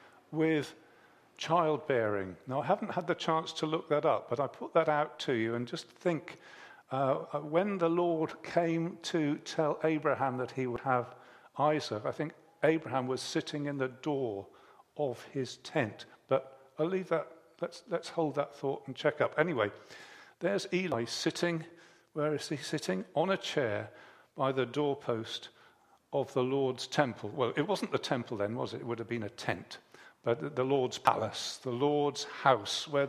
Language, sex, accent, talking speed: English, male, British, 180 wpm